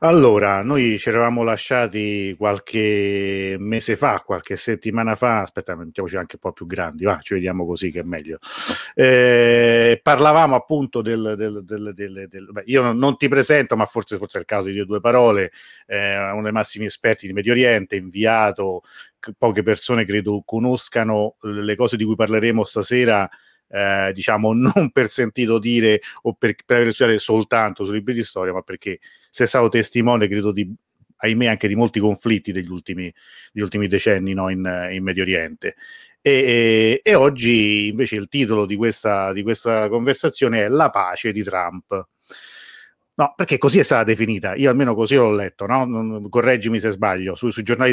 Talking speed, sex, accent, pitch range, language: 175 wpm, male, native, 100-120 Hz, Italian